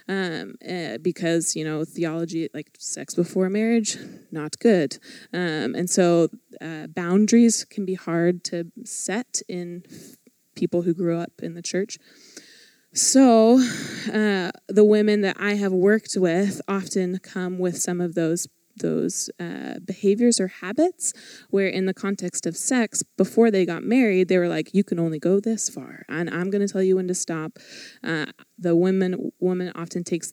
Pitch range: 175-205 Hz